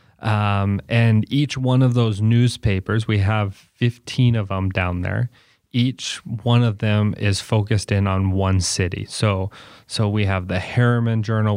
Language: English